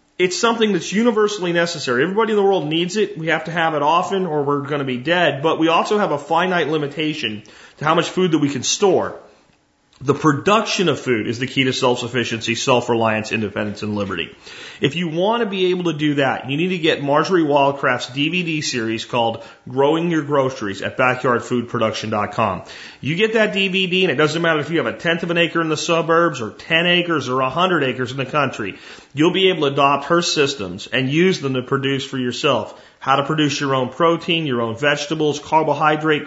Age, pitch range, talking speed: 30-49, 130-170 Hz, 210 wpm